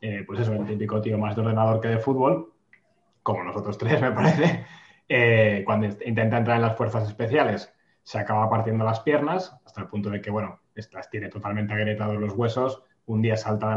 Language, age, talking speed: Spanish, 20-39, 205 wpm